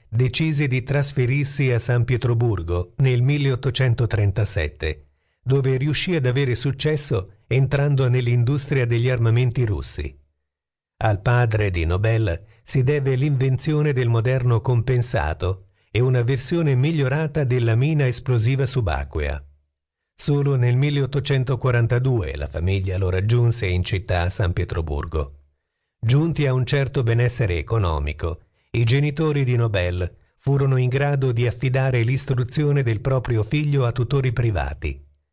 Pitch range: 95-135 Hz